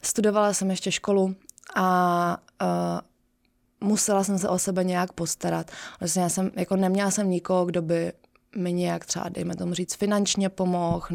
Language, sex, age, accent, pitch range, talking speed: Czech, female, 20-39, native, 165-190 Hz, 155 wpm